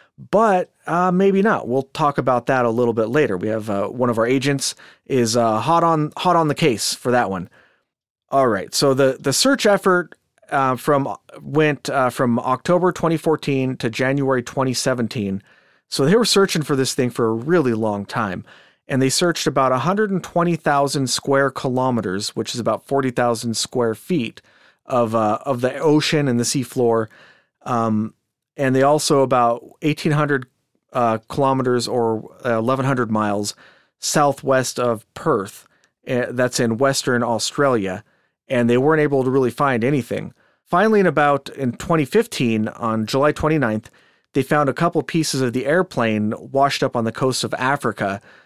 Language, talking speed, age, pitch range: English, 160 wpm, 30-49, 120-150 Hz